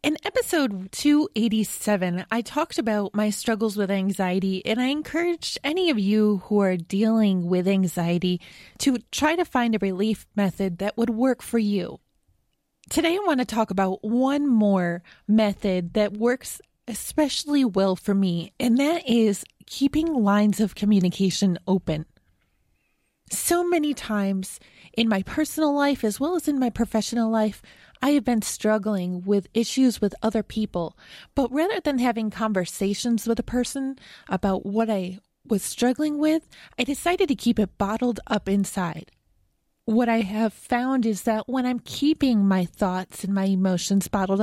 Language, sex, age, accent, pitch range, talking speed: English, female, 20-39, American, 195-250 Hz, 155 wpm